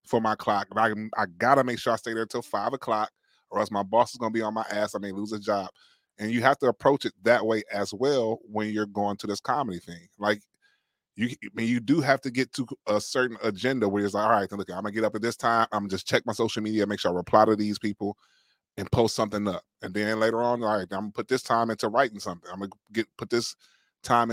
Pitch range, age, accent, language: 105-125 Hz, 20-39, American, English